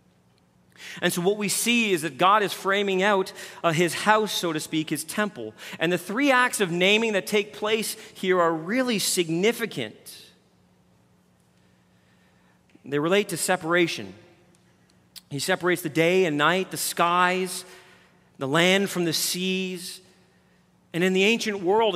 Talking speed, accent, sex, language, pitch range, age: 150 wpm, American, male, English, 145-200 Hz, 40-59